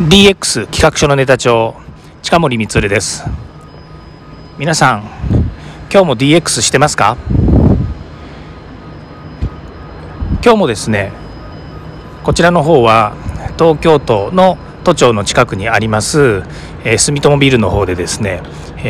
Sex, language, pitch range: male, Japanese, 105-150 Hz